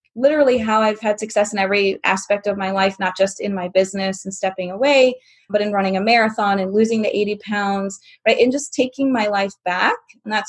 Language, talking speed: English, 215 wpm